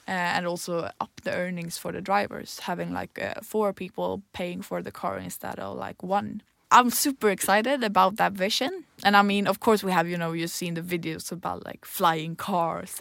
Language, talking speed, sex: English, 205 wpm, female